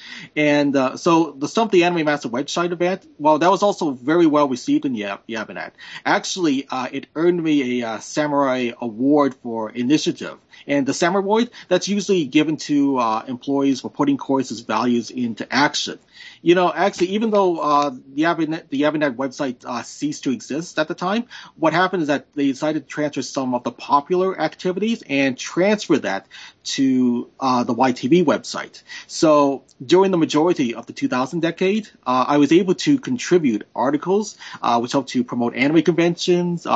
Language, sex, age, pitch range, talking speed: English, male, 30-49, 135-180 Hz, 175 wpm